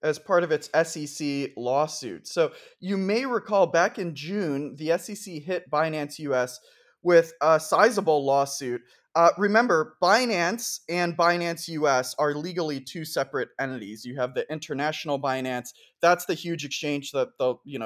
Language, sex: English, male